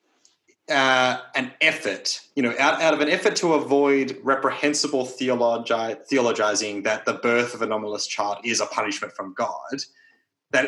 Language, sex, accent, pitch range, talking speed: English, male, Australian, 120-145 Hz, 150 wpm